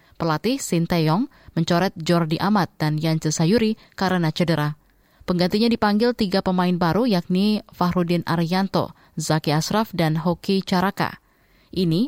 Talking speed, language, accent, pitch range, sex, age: 120 wpm, Indonesian, native, 165-195 Hz, female, 20-39